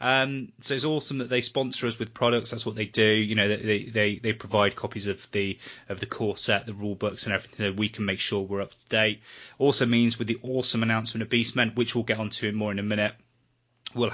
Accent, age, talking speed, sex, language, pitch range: British, 20-39, 255 wpm, male, English, 105-125 Hz